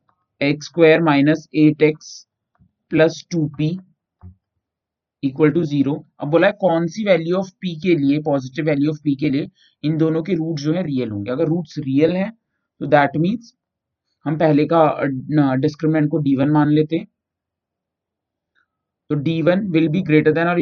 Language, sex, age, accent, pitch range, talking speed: Hindi, male, 30-49, native, 140-170 Hz, 135 wpm